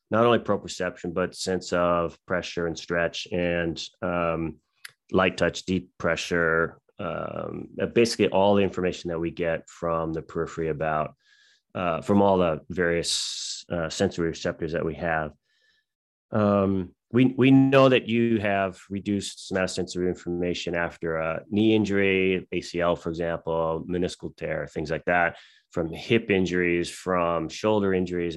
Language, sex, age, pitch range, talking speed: English, male, 30-49, 85-100 Hz, 140 wpm